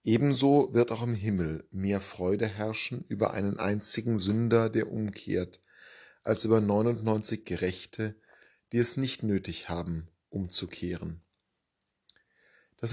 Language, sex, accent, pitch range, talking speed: German, male, German, 100-120 Hz, 115 wpm